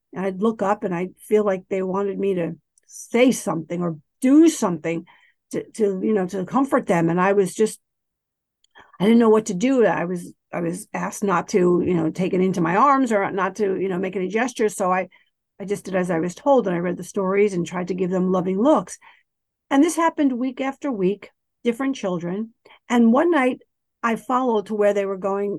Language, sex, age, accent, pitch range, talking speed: English, female, 50-69, American, 190-245 Hz, 225 wpm